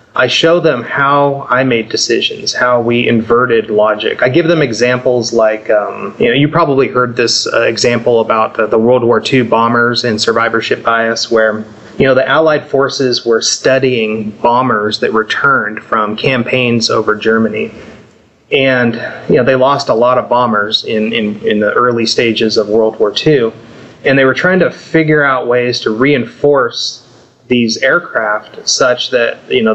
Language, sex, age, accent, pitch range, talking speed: English, male, 30-49, American, 115-150 Hz, 170 wpm